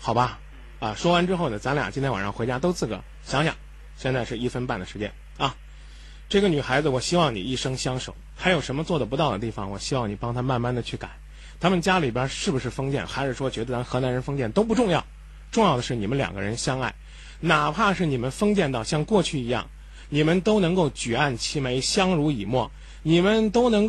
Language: Chinese